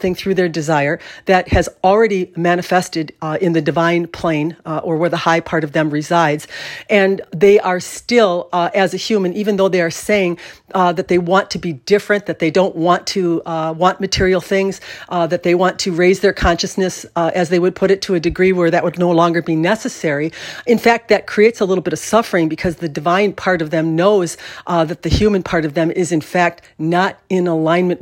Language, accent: English, American